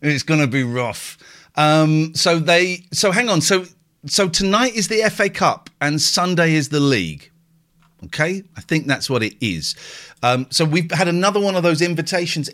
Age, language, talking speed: 40-59, English, 185 wpm